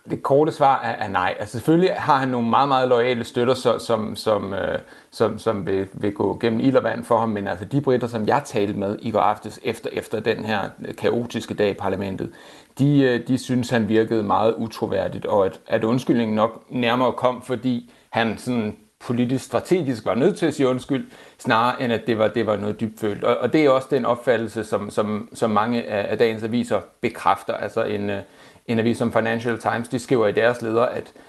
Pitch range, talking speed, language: 105-125 Hz, 205 wpm, Danish